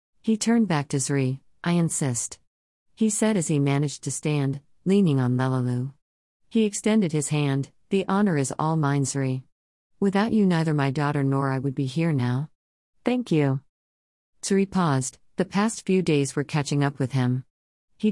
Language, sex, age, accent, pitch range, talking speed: English, female, 50-69, American, 130-175 Hz, 170 wpm